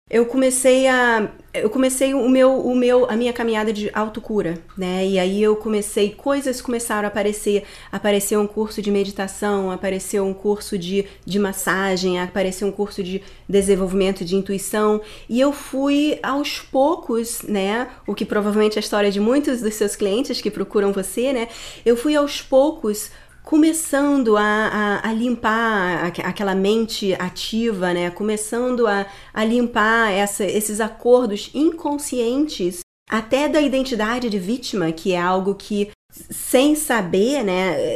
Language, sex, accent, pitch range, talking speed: Portuguese, female, Brazilian, 195-245 Hz, 145 wpm